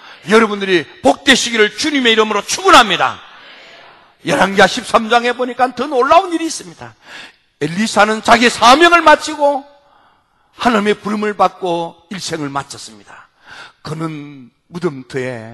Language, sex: Korean, male